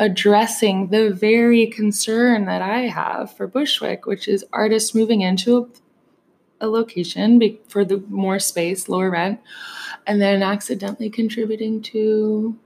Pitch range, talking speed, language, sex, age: 185-220 Hz, 135 wpm, English, female, 20-39